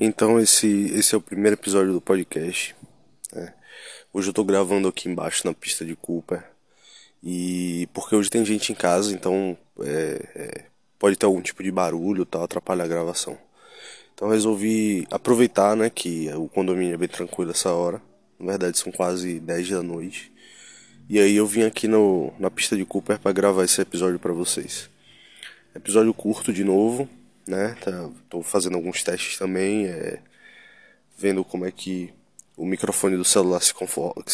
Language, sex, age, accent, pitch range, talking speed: Portuguese, male, 20-39, Brazilian, 90-105 Hz, 170 wpm